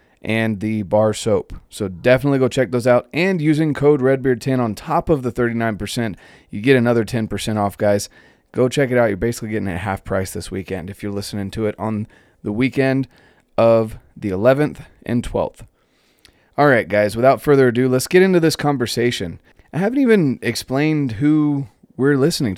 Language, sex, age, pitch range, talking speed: English, male, 30-49, 105-130 Hz, 185 wpm